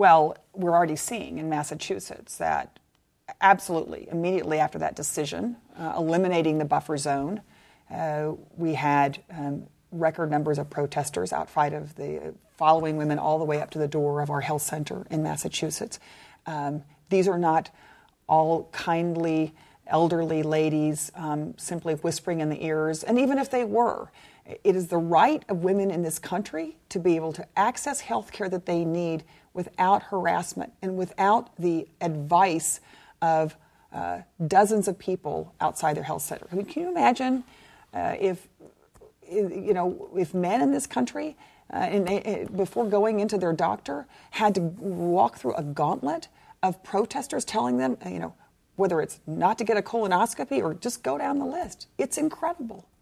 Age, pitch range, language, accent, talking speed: 40-59, 155-195 Hz, English, American, 165 wpm